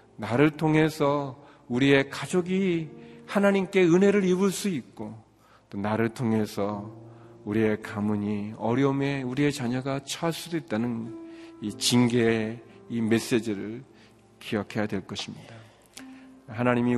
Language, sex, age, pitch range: Korean, male, 40-59, 110-135 Hz